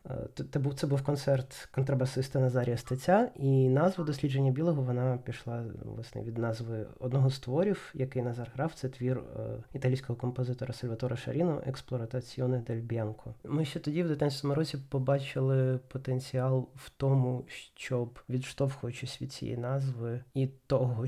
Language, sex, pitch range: Ukrainian, male, 125-140 Hz